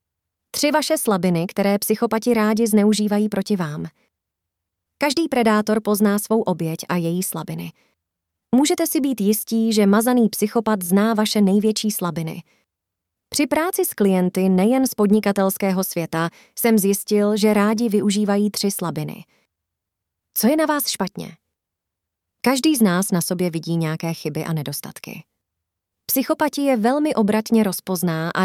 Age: 30-49